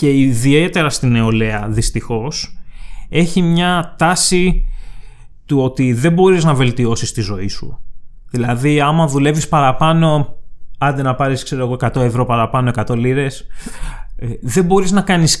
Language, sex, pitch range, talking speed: Greek, male, 130-165 Hz, 130 wpm